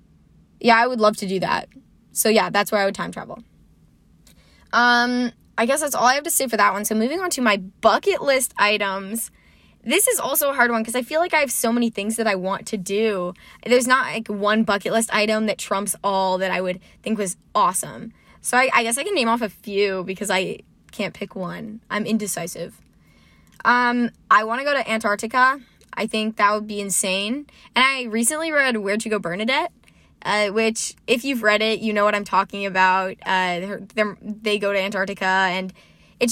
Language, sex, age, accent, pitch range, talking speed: English, female, 10-29, American, 200-240 Hz, 215 wpm